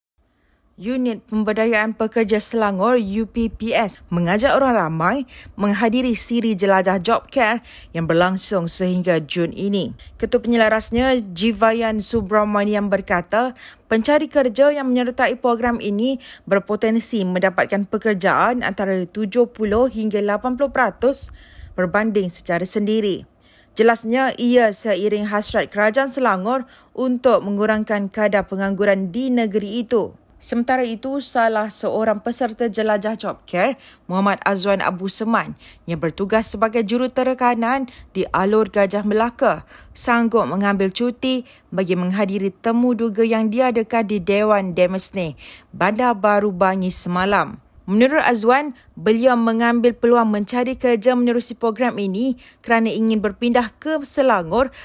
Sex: female